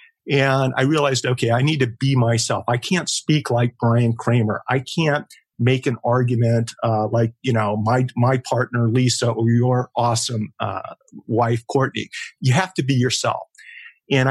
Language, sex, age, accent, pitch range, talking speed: English, male, 50-69, American, 115-135 Hz, 170 wpm